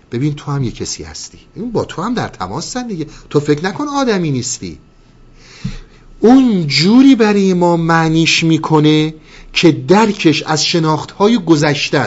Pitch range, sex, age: 110-165 Hz, male, 50-69